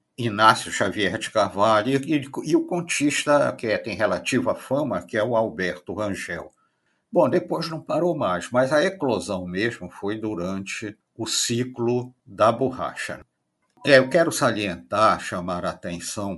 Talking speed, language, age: 150 wpm, Portuguese, 60-79